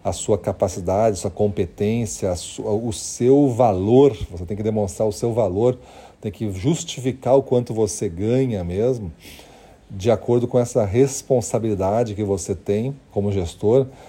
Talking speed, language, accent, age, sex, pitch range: 155 wpm, Portuguese, Brazilian, 40-59, male, 100-125 Hz